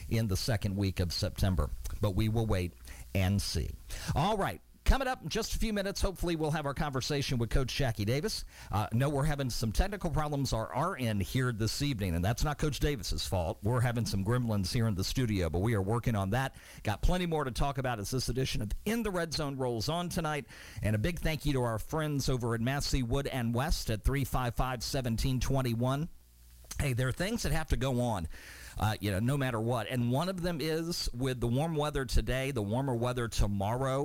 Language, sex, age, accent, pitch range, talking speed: English, male, 50-69, American, 110-145 Hz, 225 wpm